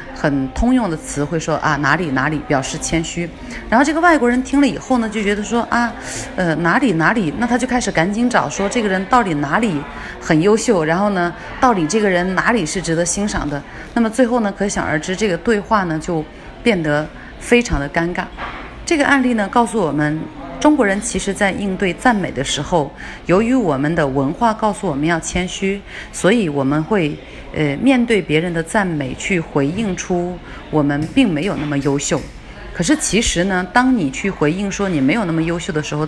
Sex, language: female, Chinese